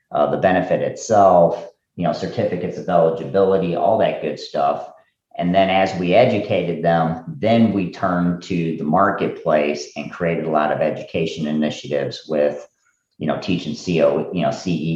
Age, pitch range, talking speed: 40-59, 75-85 Hz, 160 wpm